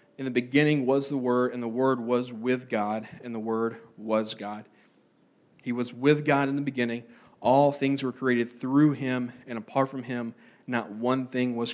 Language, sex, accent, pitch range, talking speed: English, male, American, 120-140 Hz, 195 wpm